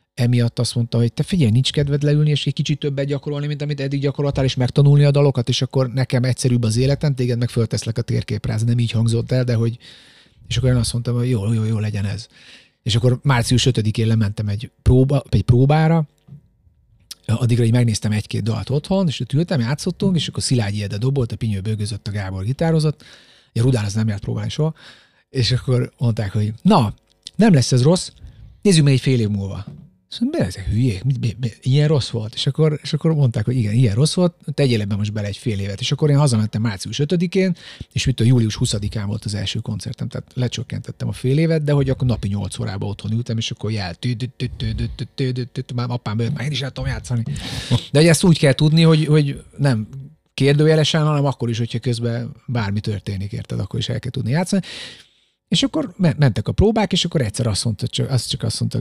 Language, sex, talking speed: Hungarian, male, 200 wpm